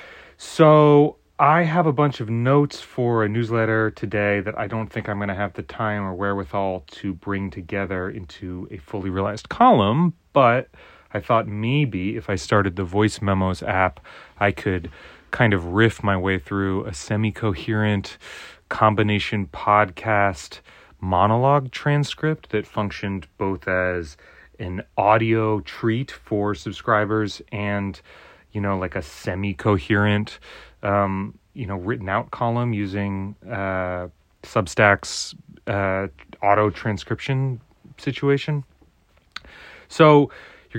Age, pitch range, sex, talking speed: 30-49, 95-115 Hz, male, 130 wpm